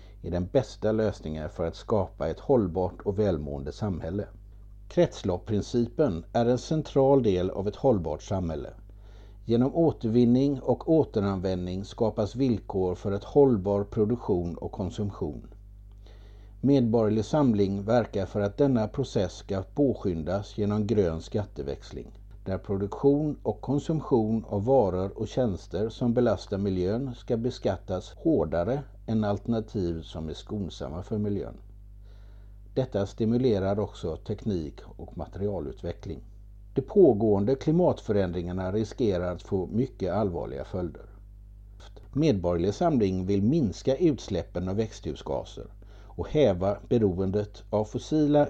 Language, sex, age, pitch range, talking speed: Swedish, male, 60-79, 95-115 Hz, 115 wpm